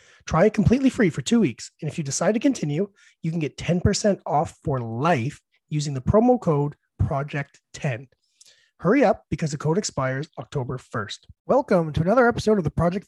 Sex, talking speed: male, 185 wpm